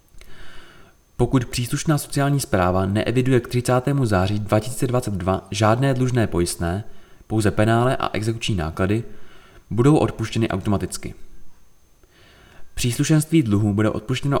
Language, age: Czech, 30-49